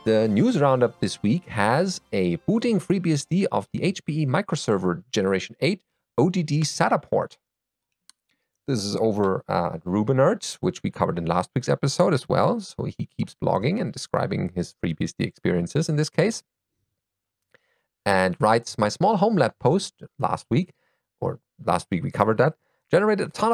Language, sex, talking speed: English, male, 160 wpm